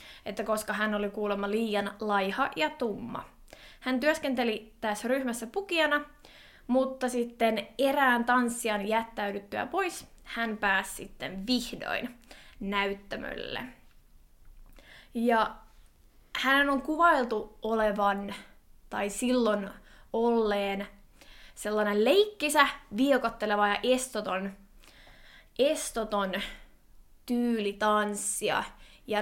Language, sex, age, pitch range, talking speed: Finnish, female, 20-39, 205-255 Hz, 80 wpm